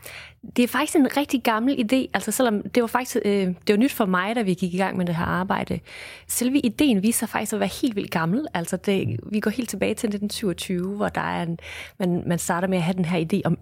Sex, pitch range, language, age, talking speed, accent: female, 170-220 Hz, Danish, 30-49, 260 wpm, native